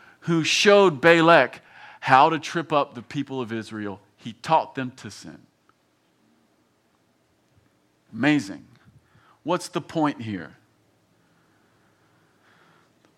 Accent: American